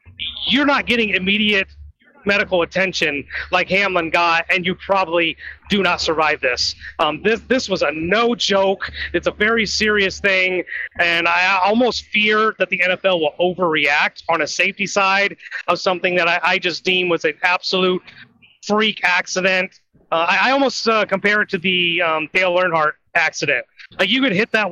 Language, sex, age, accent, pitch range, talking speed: English, male, 30-49, American, 170-205 Hz, 170 wpm